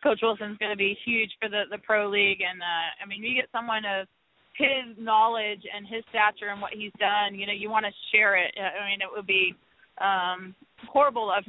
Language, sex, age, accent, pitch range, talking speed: English, female, 20-39, American, 195-225 Hz, 225 wpm